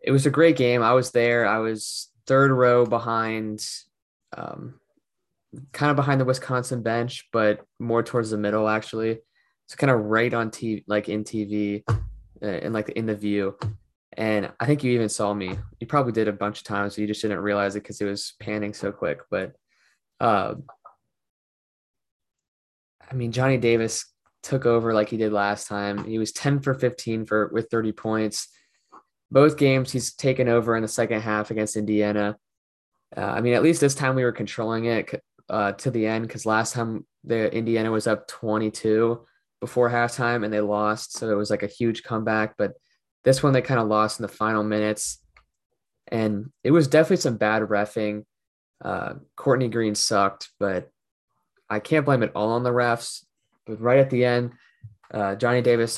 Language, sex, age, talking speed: English, male, 20-39, 185 wpm